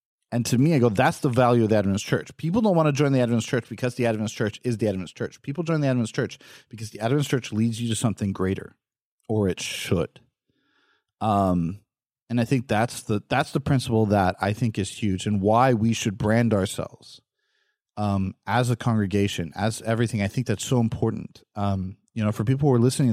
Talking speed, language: 220 wpm, English